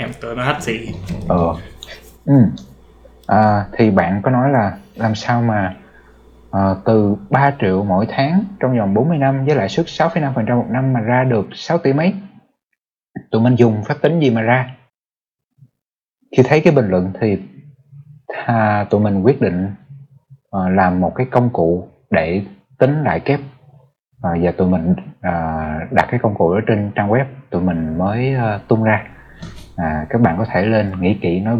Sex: male